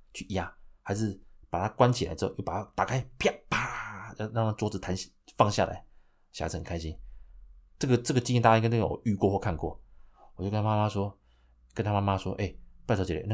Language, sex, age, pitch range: Chinese, male, 30-49, 85-115 Hz